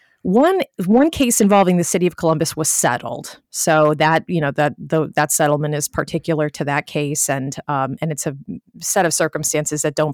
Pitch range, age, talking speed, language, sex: 150-180 Hz, 30-49, 195 wpm, English, female